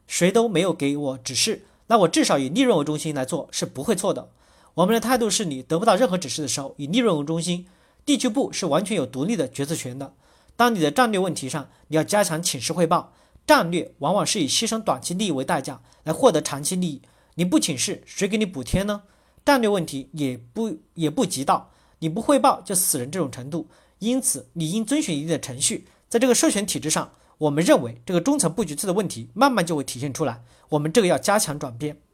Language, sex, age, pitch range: Chinese, male, 40-59, 145-215 Hz